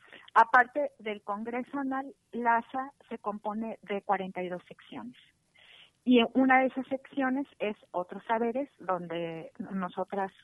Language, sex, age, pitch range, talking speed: Spanish, female, 40-59, 180-225 Hz, 115 wpm